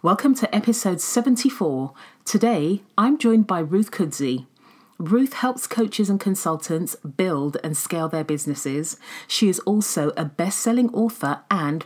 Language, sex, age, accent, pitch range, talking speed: English, female, 40-59, British, 155-210 Hz, 135 wpm